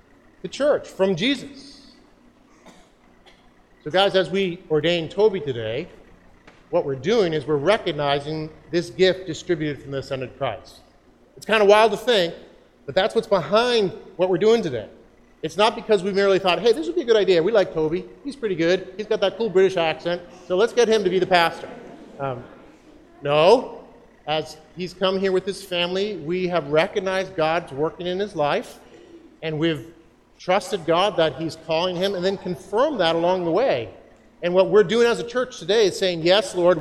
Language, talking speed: English, 185 wpm